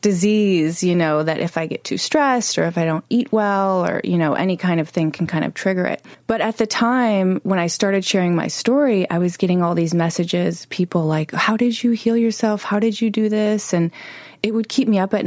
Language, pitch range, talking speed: English, 165-205 Hz, 245 wpm